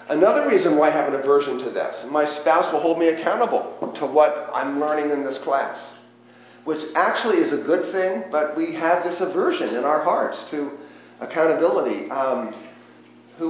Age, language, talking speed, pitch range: 40-59, English, 180 wpm, 145-180 Hz